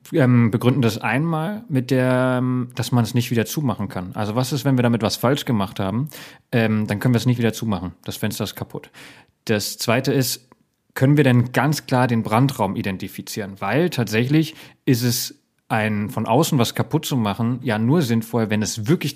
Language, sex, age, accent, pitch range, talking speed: German, male, 30-49, German, 110-135 Hz, 195 wpm